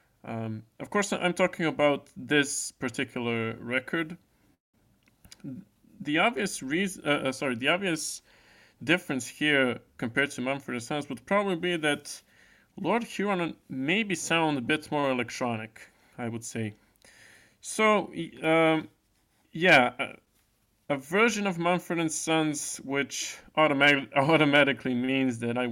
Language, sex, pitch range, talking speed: English, male, 125-155 Hz, 125 wpm